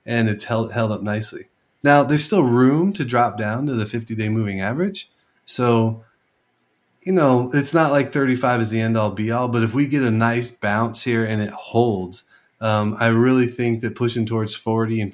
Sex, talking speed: male, 195 wpm